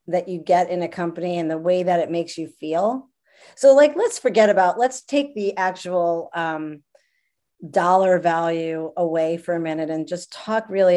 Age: 40-59